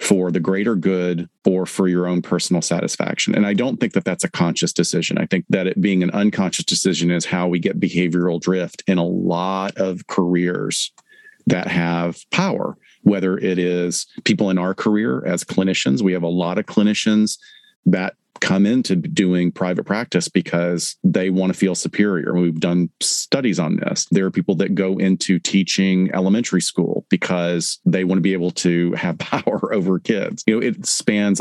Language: English